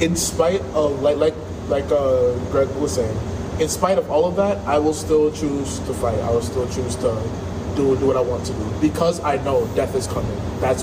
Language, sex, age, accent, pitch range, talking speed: English, male, 20-39, American, 95-150 Hz, 225 wpm